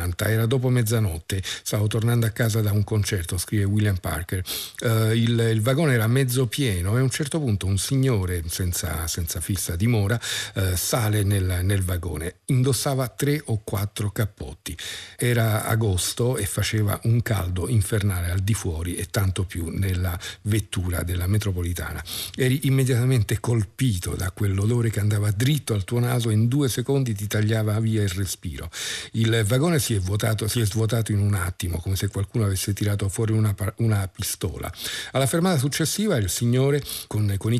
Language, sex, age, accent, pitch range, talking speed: Italian, male, 50-69, native, 95-120 Hz, 165 wpm